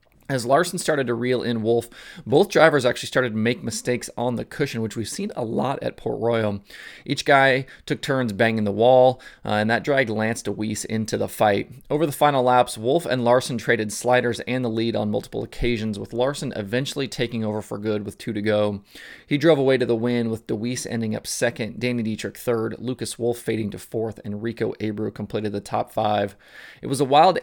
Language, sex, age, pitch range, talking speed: English, male, 20-39, 105-125 Hz, 210 wpm